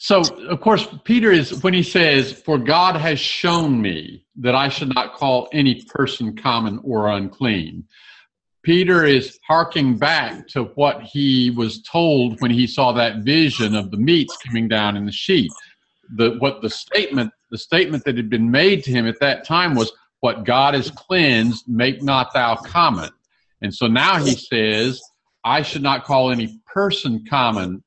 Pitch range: 120-175 Hz